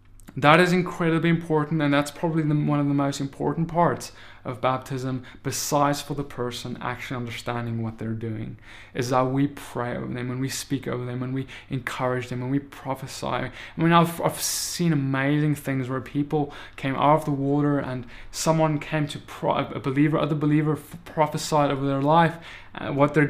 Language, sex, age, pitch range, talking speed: English, male, 20-39, 125-150 Hz, 185 wpm